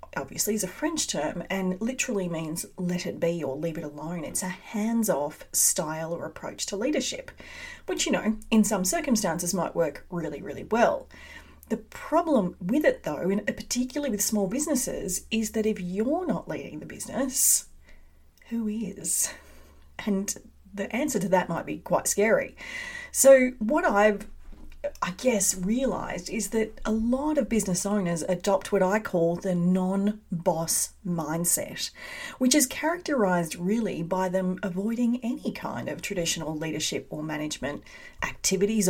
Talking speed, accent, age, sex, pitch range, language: 150 wpm, Australian, 30-49, female, 180-245 Hz, English